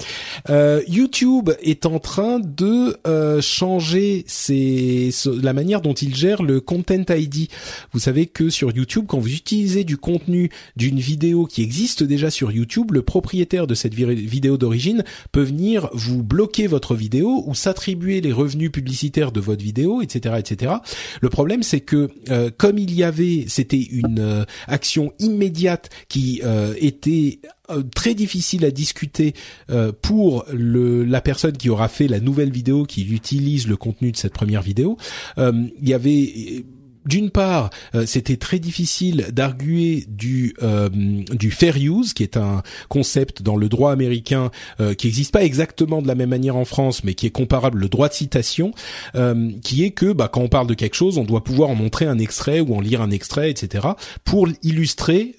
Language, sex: French, male